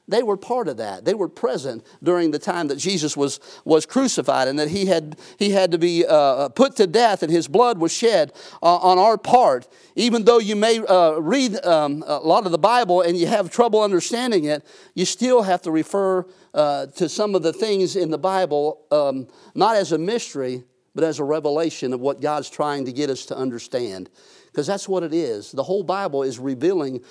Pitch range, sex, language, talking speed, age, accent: 150-190 Hz, male, English, 215 wpm, 50-69, American